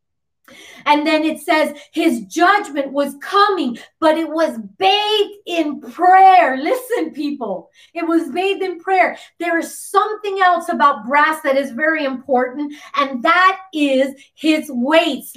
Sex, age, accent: female, 30-49, American